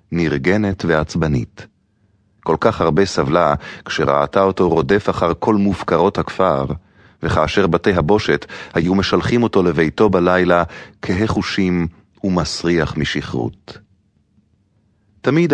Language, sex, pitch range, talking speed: English, male, 90-110 Hz, 95 wpm